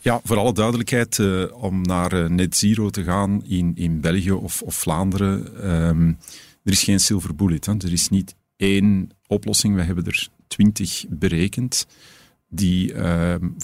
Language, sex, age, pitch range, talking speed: Dutch, male, 50-69, 90-110 Hz, 160 wpm